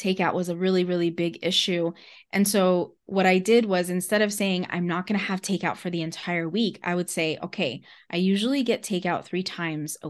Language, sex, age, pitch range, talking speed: English, female, 20-39, 175-215 Hz, 220 wpm